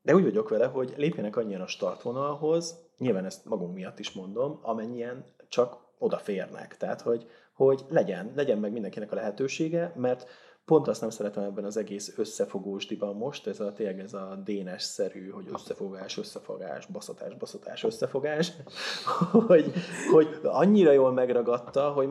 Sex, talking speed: male, 150 wpm